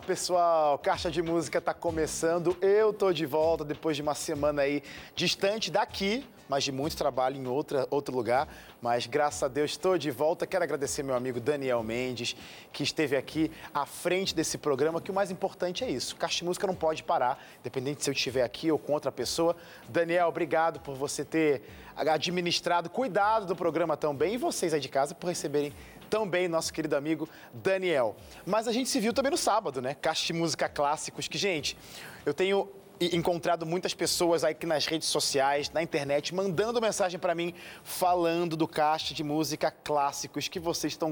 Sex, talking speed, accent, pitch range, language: male, 185 wpm, Brazilian, 145-185 Hz, Portuguese